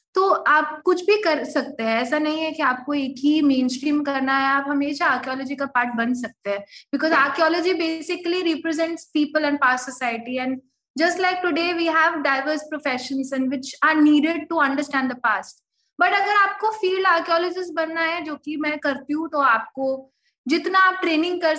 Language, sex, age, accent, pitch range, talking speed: Hindi, female, 20-39, native, 245-305 Hz, 190 wpm